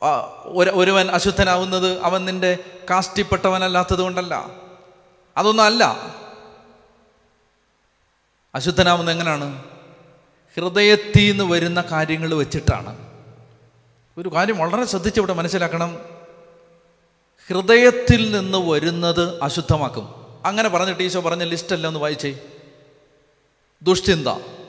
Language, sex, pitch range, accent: Malayalam, male, 155-205 Hz, native